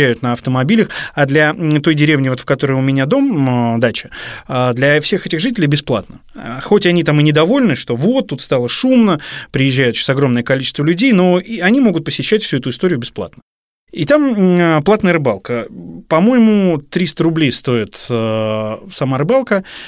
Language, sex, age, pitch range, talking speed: Russian, male, 20-39, 120-165 Hz, 155 wpm